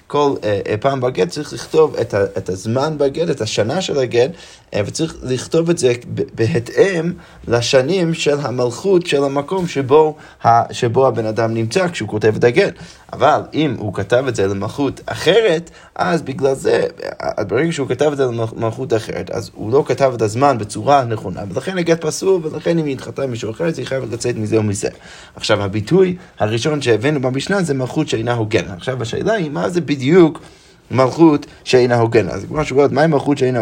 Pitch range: 120-165 Hz